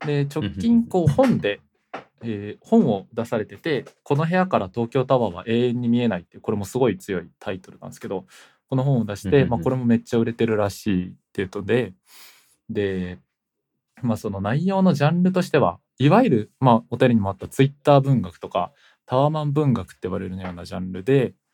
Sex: male